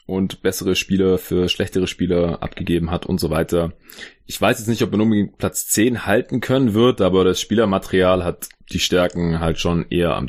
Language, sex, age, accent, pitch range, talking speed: German, male, 20-39, German, 85-100 Hz, 195 wpm